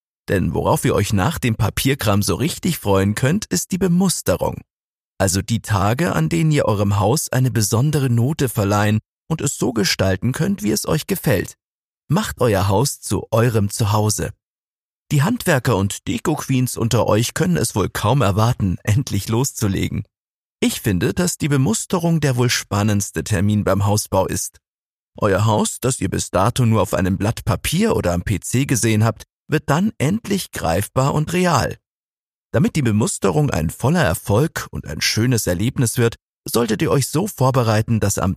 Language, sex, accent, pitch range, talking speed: German, male, German, 100-145 Hz, 165 wpm